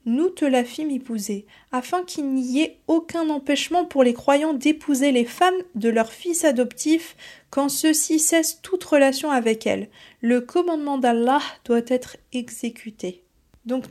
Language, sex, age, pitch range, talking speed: French, female, 20-39, 235-295 Hz, 150 wpm